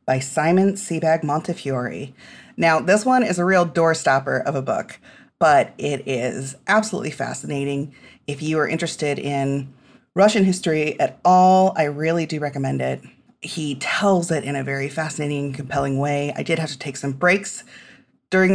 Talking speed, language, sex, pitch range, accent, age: 165 wpm, English, female, 140-200 Hz, American, 30-49